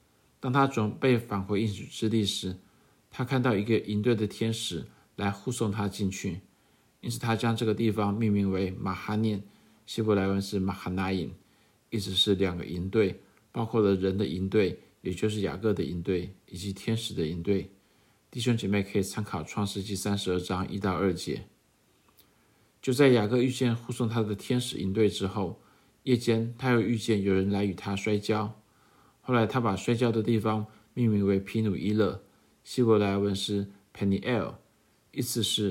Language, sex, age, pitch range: Chinese, male, 50-69, 100-115 Hz